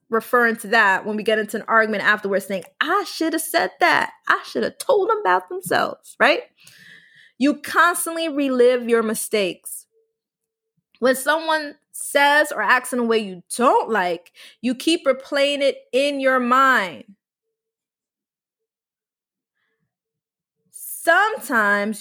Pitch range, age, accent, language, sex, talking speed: 225-295 Hz, 20-39, American, English, female, 130 wpm